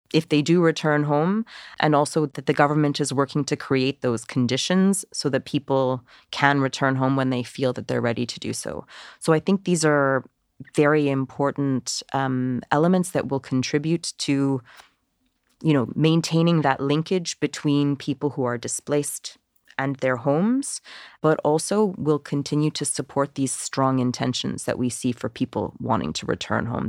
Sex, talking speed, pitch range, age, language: female, 165 wpm, 125-150 Hz, 30-49, Ukrainian